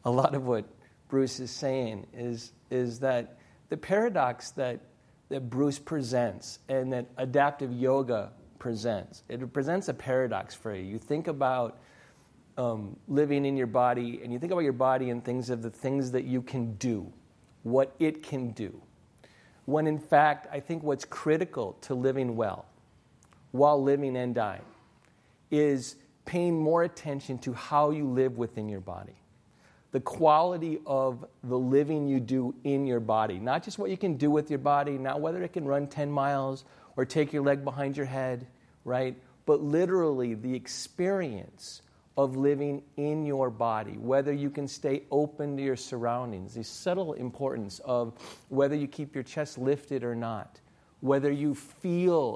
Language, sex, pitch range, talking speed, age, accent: English, male, 120-145 Hz, 165 wpm, 40-59, American